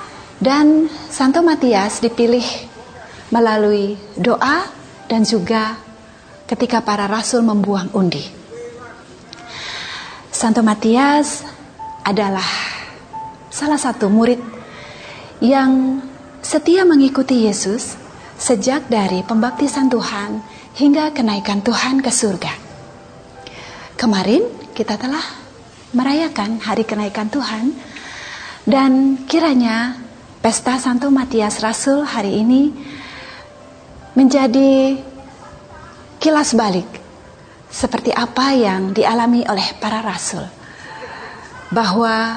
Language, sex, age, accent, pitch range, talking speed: Indonesian, female, 30-49, native, 215-270 Hz, 80 wpm